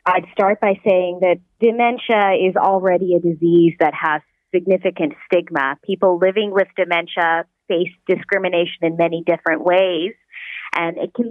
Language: English